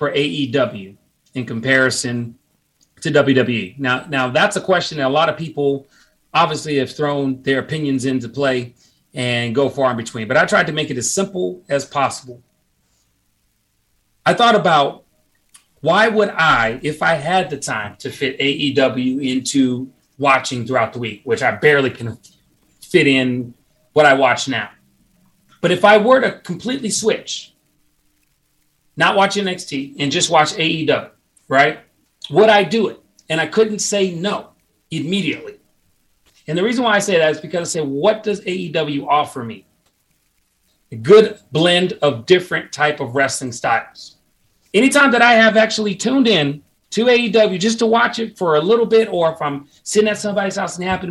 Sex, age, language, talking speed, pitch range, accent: male, 30-49, English, 170 wpm, 135-200 Hz, American